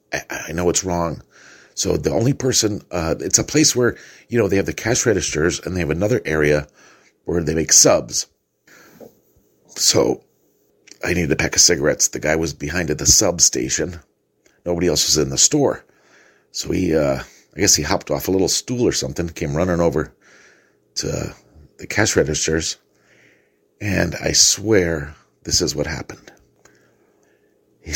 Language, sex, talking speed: English, male, 165 wpm